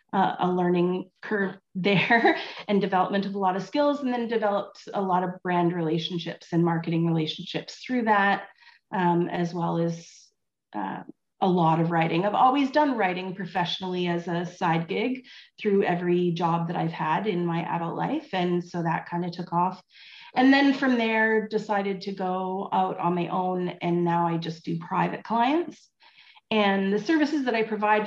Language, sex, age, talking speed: English, female, 30-49, 180 wpm